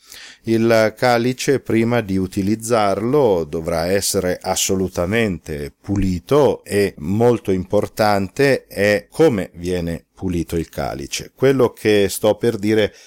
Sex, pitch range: male, 90-110 Hz